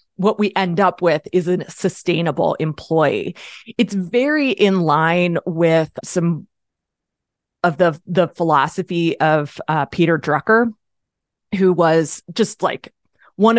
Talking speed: 125 wpm